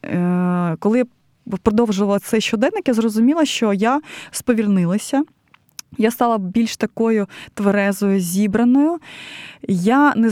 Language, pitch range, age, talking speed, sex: Ukrainian, 195-250 Hz, 20-39, 100 wpm, female